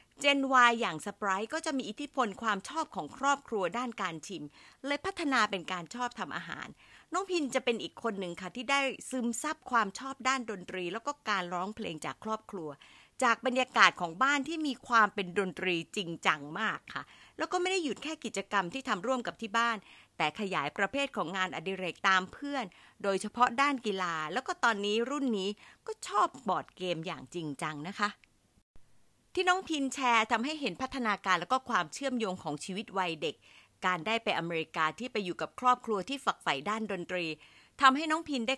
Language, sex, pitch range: Thai, female, 185-260 Hz